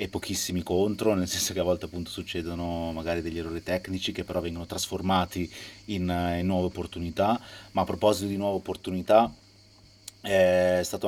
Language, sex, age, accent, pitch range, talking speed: Italian, male, 30-49, native, 90-105 Hz, 165 wpm